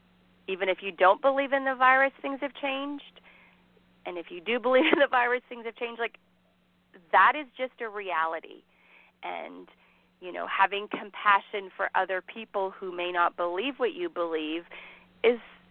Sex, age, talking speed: female, 30-49, 170 wpm